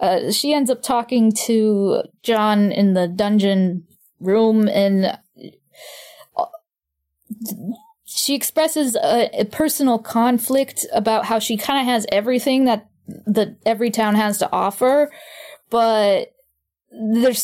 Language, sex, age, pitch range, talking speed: English, female, 10-29, 200-250 Hz, 120 wpm